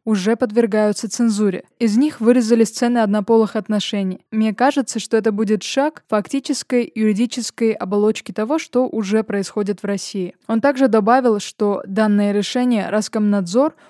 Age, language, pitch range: 20-39, Russian, 205-235 Hz